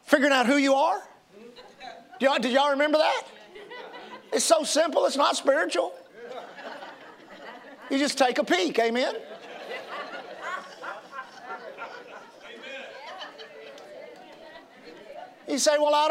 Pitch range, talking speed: 265-330 Hz, 100 wpm